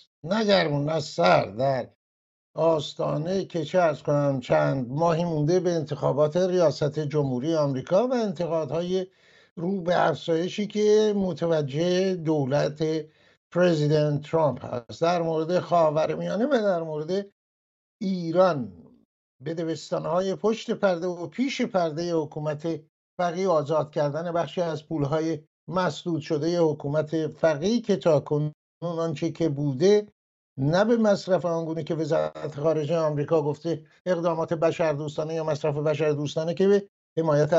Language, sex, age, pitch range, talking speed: English, male, 60-79, 155-185 Hz, 125 wpm